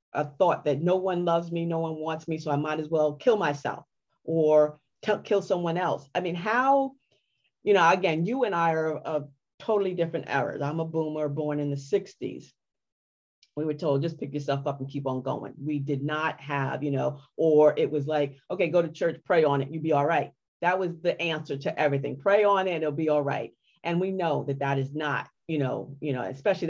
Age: 40-59